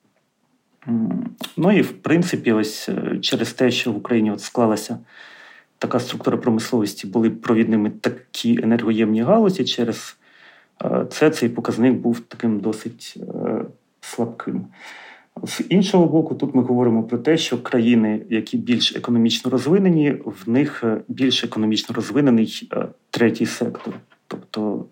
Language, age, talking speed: Ukrainian, 40-59, 120 wpm